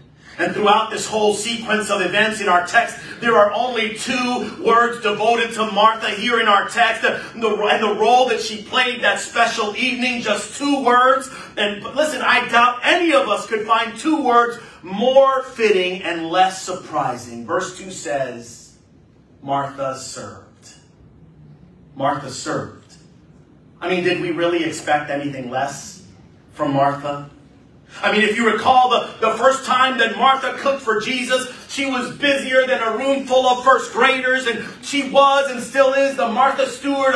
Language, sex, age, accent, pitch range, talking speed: English, male, 40-59, American, 180-260 Hz, 165 wpm